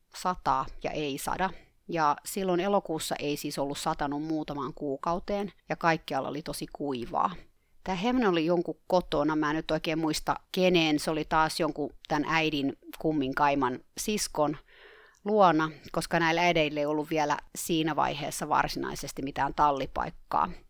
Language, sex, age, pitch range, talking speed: Finnish, female, 30-49, 150-190 Hz, 145 wpm